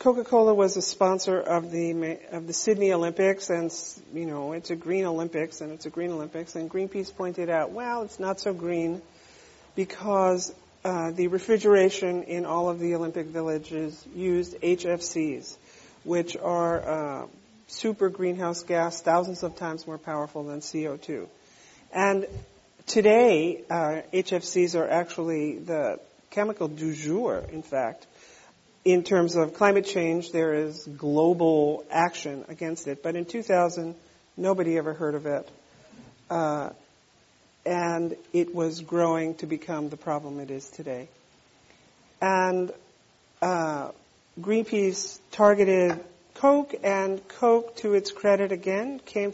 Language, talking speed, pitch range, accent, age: English, 135 wpm, 165-195 Hz, American, 50-69